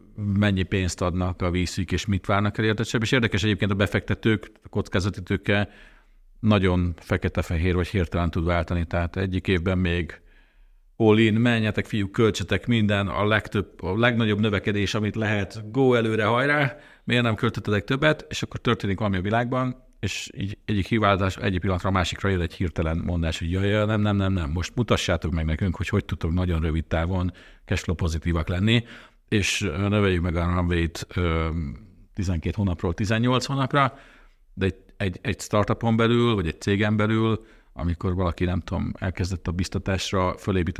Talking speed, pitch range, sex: 165 wpm, 90-110 Hz, male